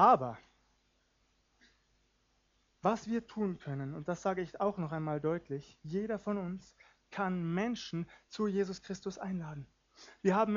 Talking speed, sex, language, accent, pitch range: 135 wpm, male, German, German, 170-215 Hz